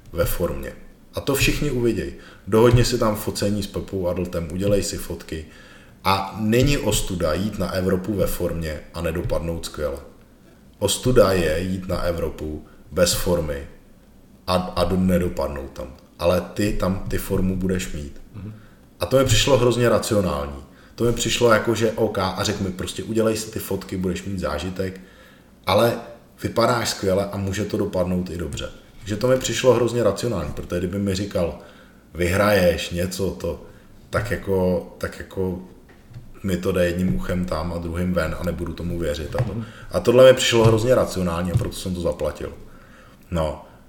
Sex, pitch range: male, 85-105 Hz